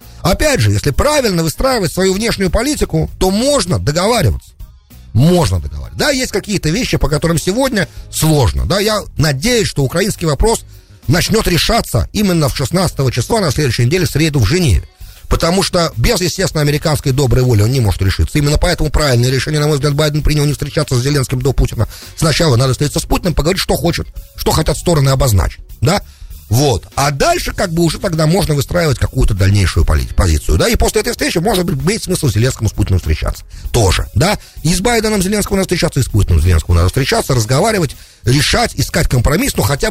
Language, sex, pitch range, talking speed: English, male, 105-175 Hz, 185 wpm